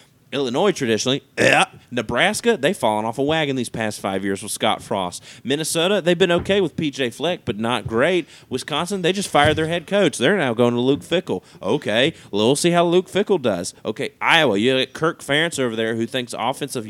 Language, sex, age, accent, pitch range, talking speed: English, male, 30-49, American, 110-145 Hz, 200 wpm